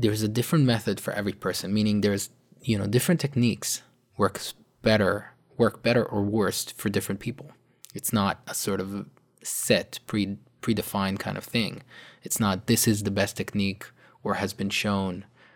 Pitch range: 95-115 Hz